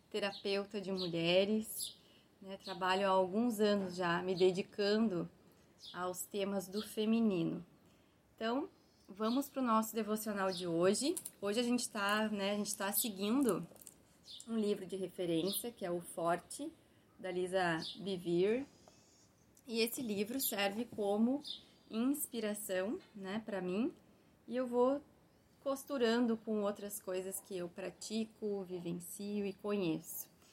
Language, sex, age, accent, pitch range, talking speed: Portuguese, female, 20-39, Brazilian, 190-225 Hz, 130 wpm